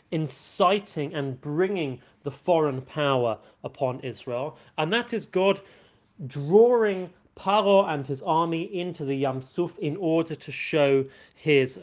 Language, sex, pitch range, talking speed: English, male, 145-195 Hz, 130 wpm